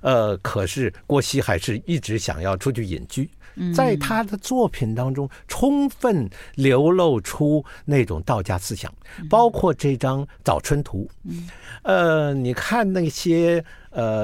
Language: Chinese